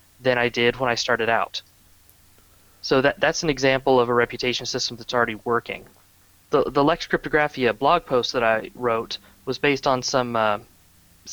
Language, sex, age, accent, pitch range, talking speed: English, male, 30-49, American, 110-140 Hz, 175 wpm